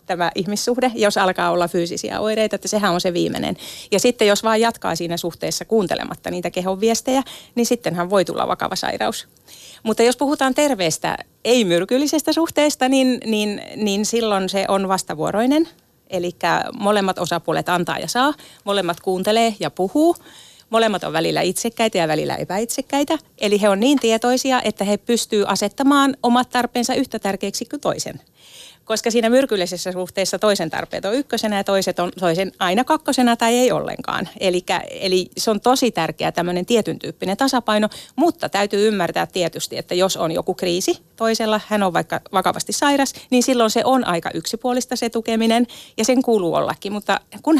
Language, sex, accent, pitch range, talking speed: Finnish, female, native, 190-250 Hz, 165 wpm